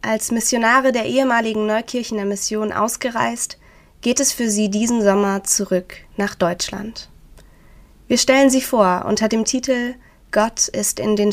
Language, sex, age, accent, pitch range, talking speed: German, female, 20-39, German, 205-245 Hz, 145 wpm